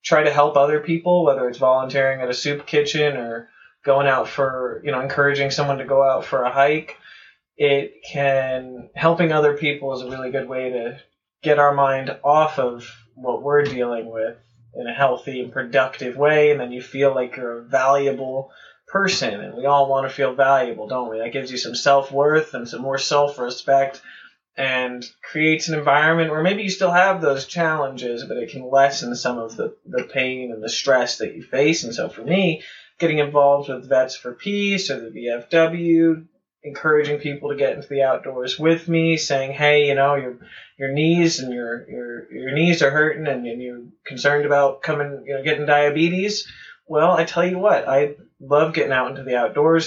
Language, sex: English, male